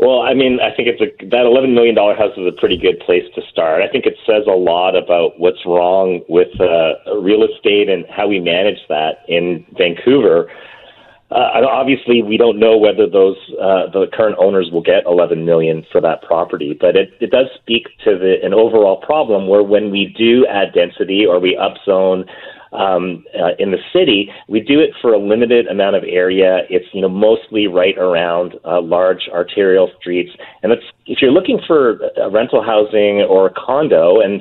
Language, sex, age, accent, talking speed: English, male, 30-49, American, 190 wpm